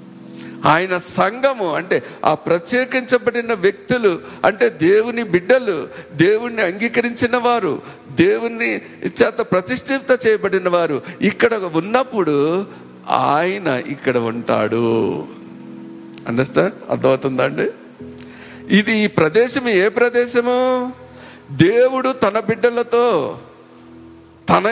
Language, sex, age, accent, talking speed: Telugu, male, 50-69, native, 85 wpm